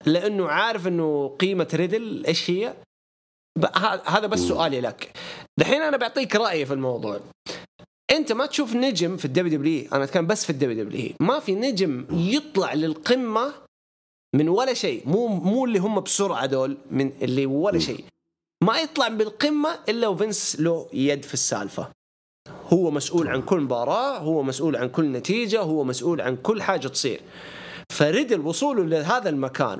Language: English